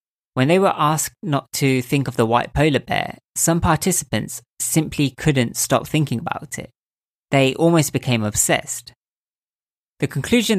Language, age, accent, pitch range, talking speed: English, 20-39, British, 115-150 Hz, 145 wpm